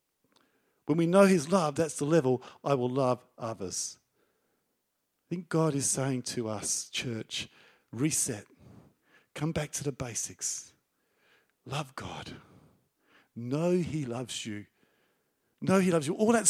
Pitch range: 150-240 Hz